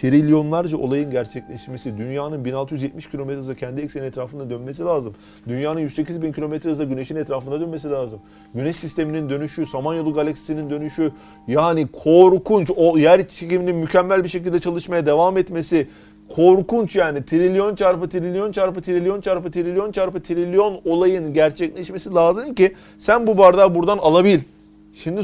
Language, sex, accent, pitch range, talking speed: Turkish, male, native, 125-185 Hz, 135 wpm